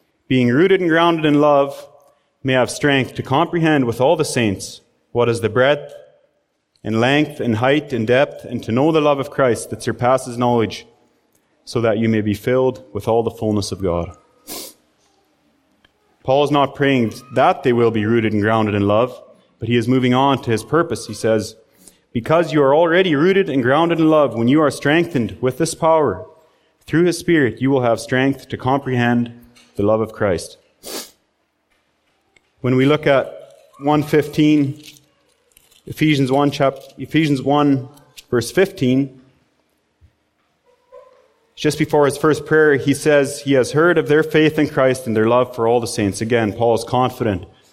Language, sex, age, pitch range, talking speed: English, male, 30-49, 115-150 Hz, 175 wpm